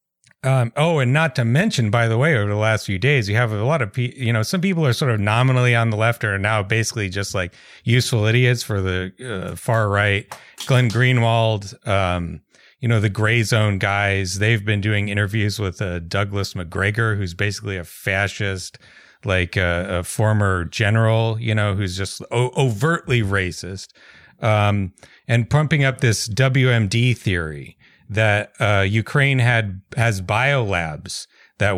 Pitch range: 95-120 Hz